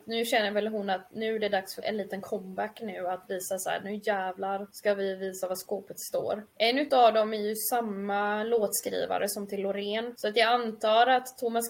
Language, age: Swedish, 20-39